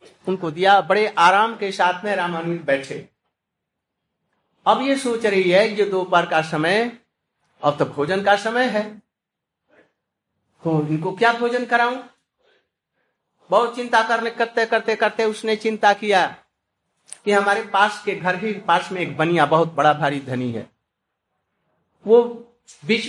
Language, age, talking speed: Hindi, 60-79, 140 wpm